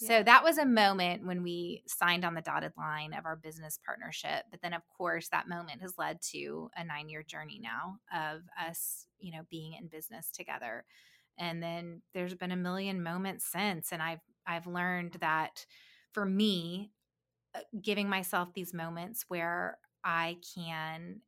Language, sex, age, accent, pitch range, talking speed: English, female, 20-39, American, 165-190 Hz, 165 wpm